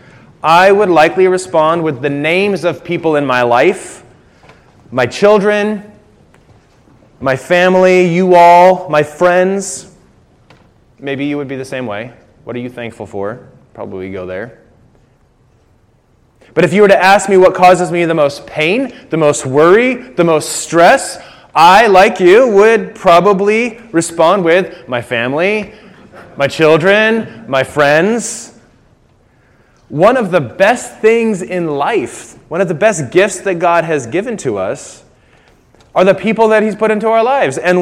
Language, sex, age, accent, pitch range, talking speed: English, male, 30-49, American, 150-210 Hz, 150 wpm